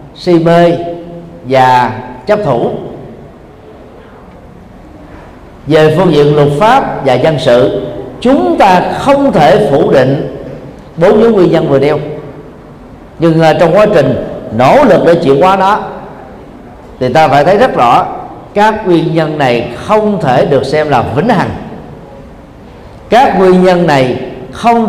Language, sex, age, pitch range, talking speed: Vietnamese, male, 50-69, 140-185 Hz, 135 wpm